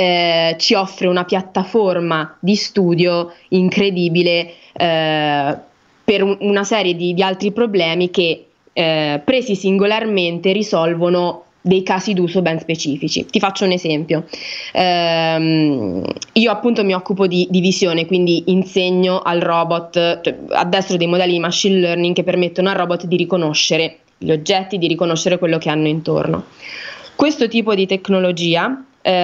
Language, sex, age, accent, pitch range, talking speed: Italian, female, 20-39, native, 170-200 Hz, 140 wpm